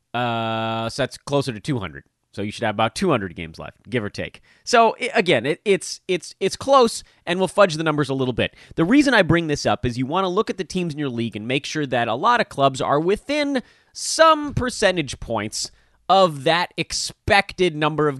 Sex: male